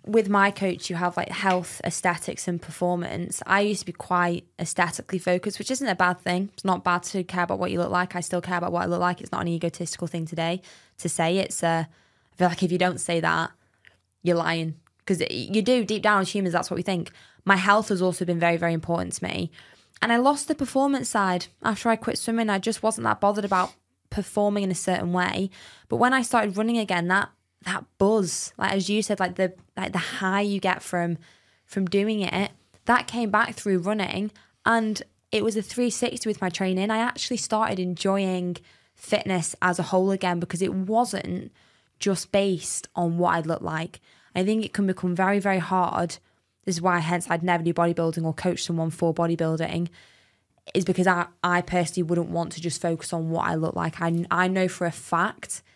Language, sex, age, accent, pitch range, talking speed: English, female, 20-39, British, 175-200 Hz, 215 wpm